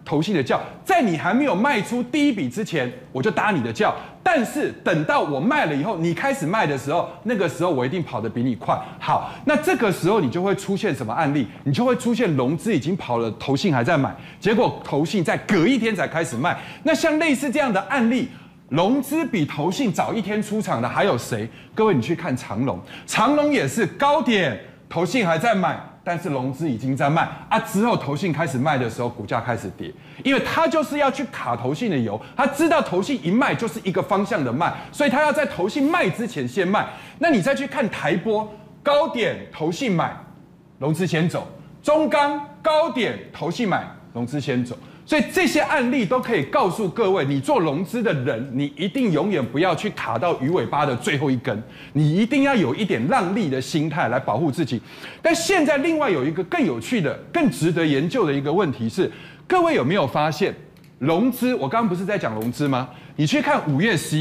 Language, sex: Chinese, male